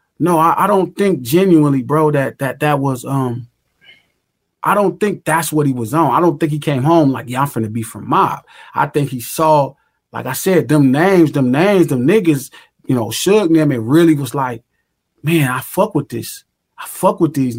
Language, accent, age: English, American, 30-49